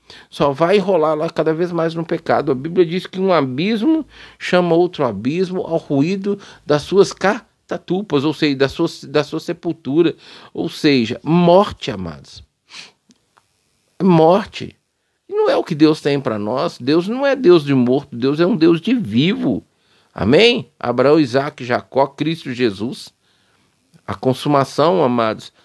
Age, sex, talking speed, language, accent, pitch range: 50-69, male, 150 wpm, Portuguese, Brazilian, 140-190 Hz